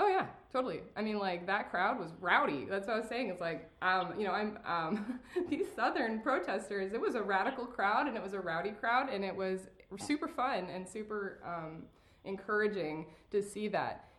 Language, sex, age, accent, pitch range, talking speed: English, female, 20-39, American, 180-230 Hz, 205 wpm